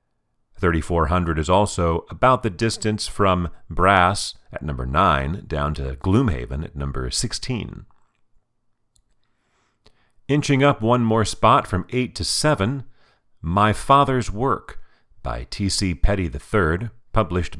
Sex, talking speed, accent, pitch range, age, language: male, 115 wpm, American, 75-115 Hz, 40-59, English